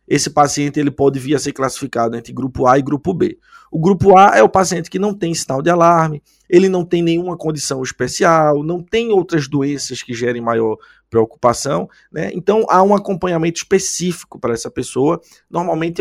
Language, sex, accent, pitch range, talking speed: Portuguese, male, Brazilian, 125-170 Hz, 185 wpm